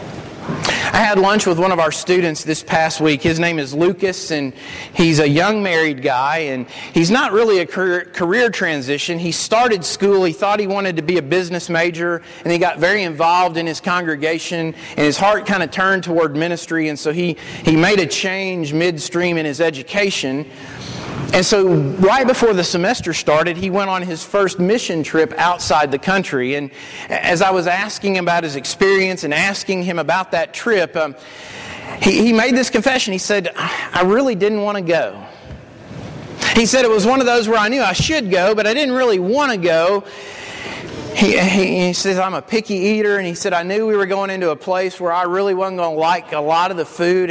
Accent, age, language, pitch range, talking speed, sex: American, 40-59, English, 165-200 Hz, 205 wpm, male